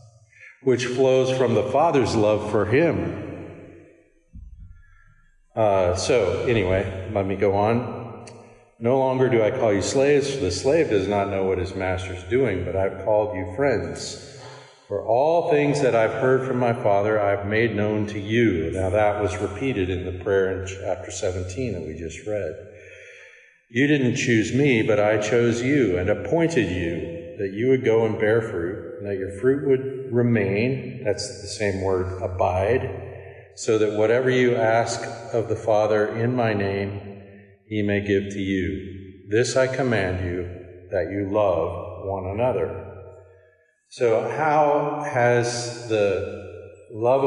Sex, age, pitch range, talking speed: male, 50-69, 100-130 Hz, 160 wpm